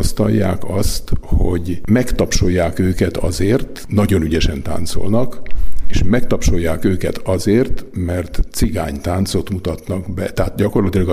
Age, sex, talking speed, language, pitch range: 50-69, male, 100 wpm, Hungarian, 85-100 Hz